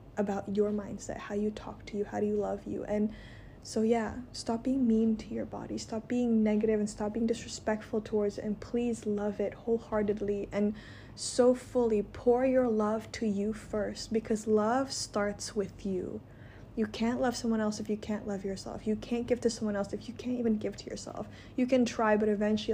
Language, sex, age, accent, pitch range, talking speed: English, female, 20-39, American, 190-225 Hz, 205 wpm